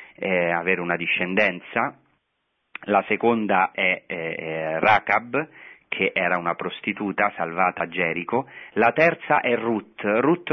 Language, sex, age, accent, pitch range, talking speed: Italian, male, 30-49, native, 95-120 Hz, 120 wpm